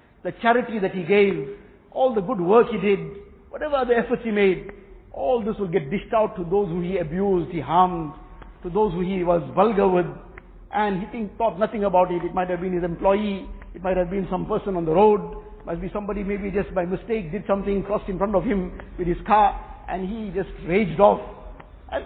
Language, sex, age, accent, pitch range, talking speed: English, male, 60-79, Indian, 180-220 Hz, 220 wpm